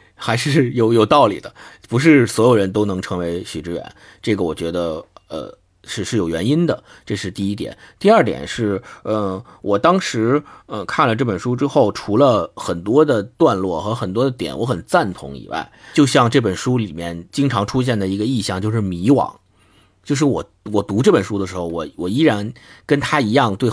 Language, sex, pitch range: Chinese, male, 100-135 Hz